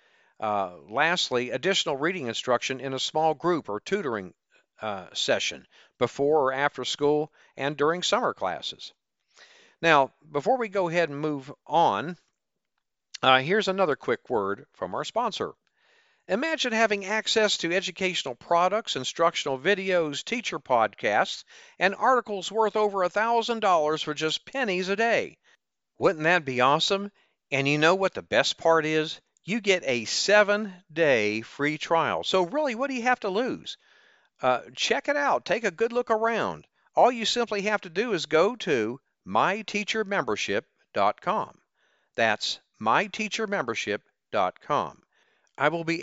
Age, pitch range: 50-69, 145-210 Hz